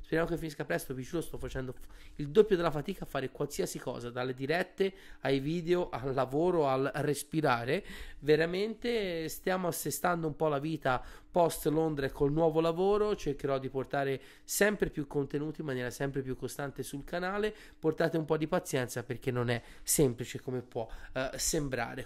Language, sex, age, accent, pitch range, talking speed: Italian, male, 30-49, native, 130-170 Hz, 165 wpm